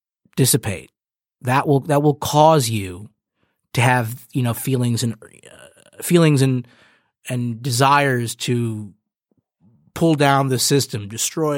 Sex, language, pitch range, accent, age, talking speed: male, English, 120-150 Hz, American, 30-49, 125 wpm